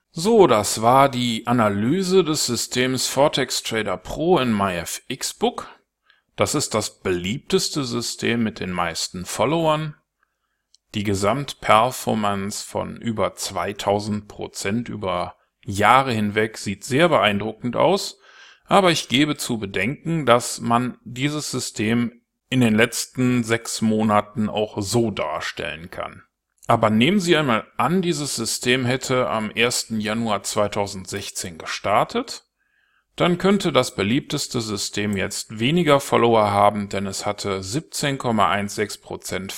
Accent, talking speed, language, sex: German, 115 wpm, German, male